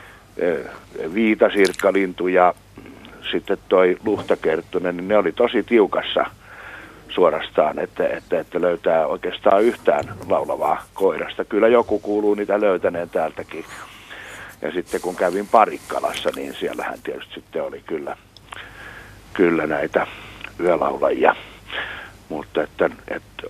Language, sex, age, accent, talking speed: Finnish, male, 60-79, native, 115 wpm